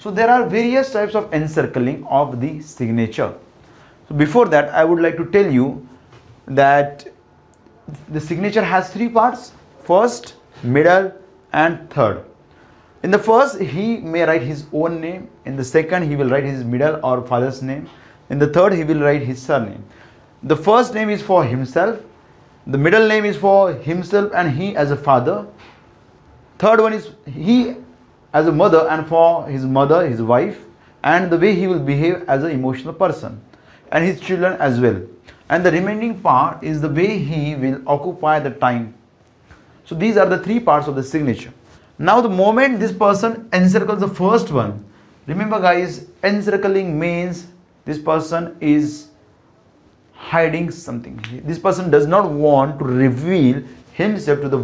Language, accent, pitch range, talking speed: Hindi, native, 135-190 Hz, 165 wpm